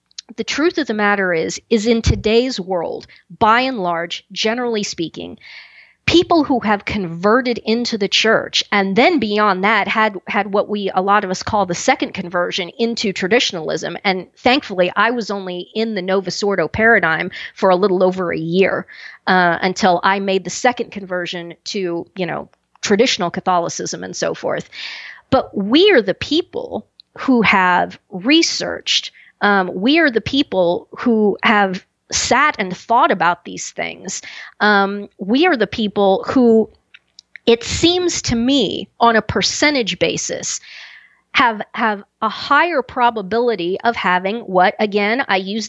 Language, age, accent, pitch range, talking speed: English, 40-59, American, 190-240 Hz, 155 wpm